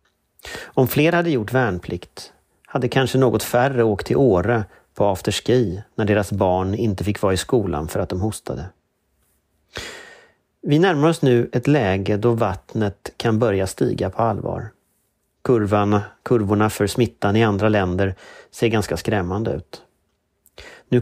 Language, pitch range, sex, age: Swedish, 100-120 Hz, male, 40-59